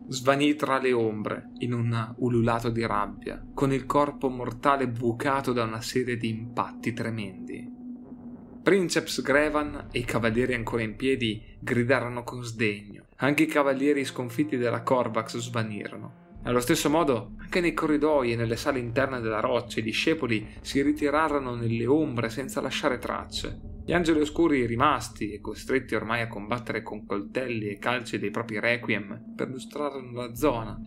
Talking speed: 150 wpm